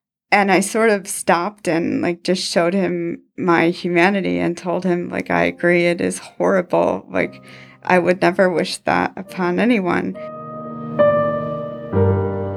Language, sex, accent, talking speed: English, female, American, 140 wpm